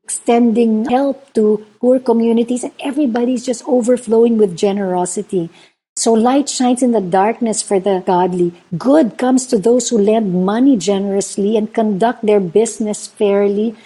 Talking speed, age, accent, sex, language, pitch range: 145 wpm, 50-69, Filipino, female, English, 205-240 Hz